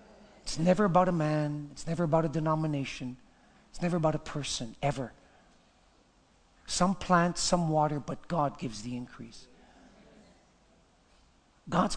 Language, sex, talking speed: English, male, 130 wpm